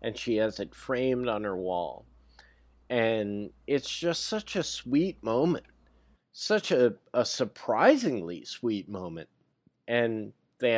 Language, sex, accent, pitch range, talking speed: English, male, American, 100-130 Hz, 130 wpm